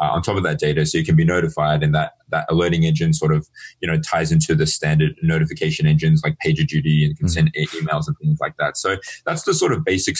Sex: male